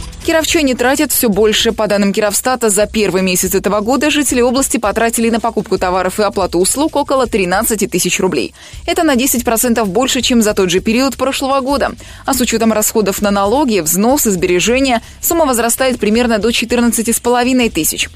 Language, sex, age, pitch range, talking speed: Russian, female, 20-39, 195-255 Hz, 165 wpm